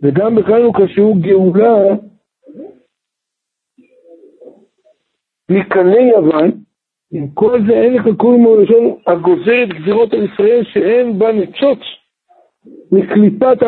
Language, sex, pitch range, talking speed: Hebrew, male, 190-235 Hz, 100 wpm